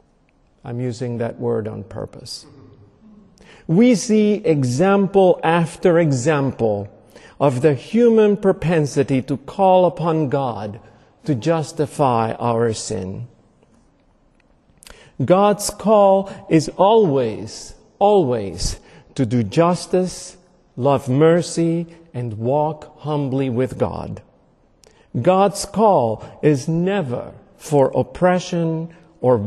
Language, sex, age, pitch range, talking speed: English, male, 50-69, 130-180 Hz, 90 wpm